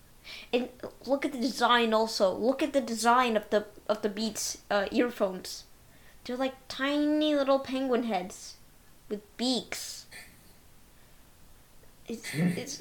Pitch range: 205-265 Hz